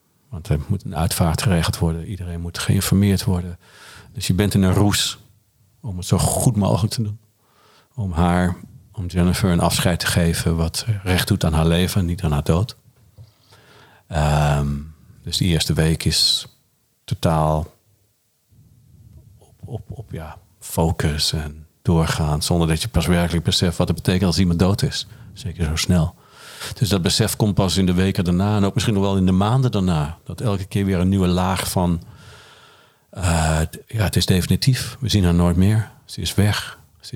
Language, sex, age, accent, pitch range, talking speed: Dutch, male, 50-69, Dutch, 90-110 Hz, 180 wpm